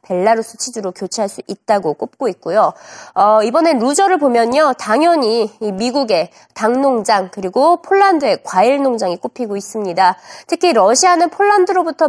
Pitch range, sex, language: 215-330 Hz, female, Korean